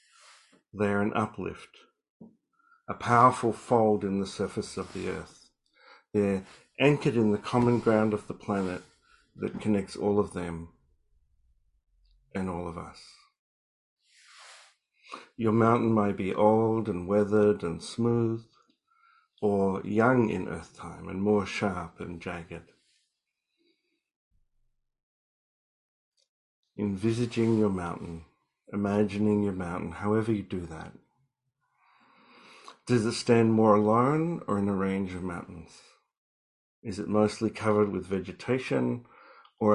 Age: 50-69